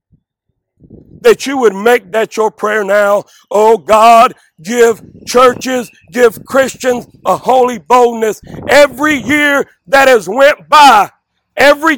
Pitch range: 240-300 Hz